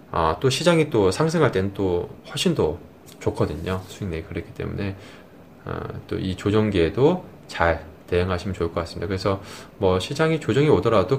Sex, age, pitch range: male, 20-39, 85-115 Hz